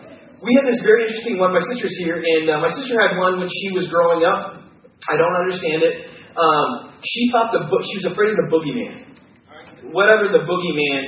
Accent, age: American, 30-49